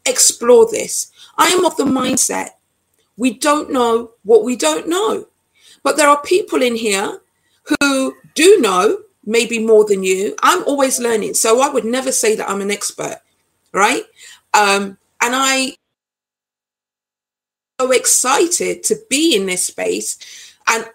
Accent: British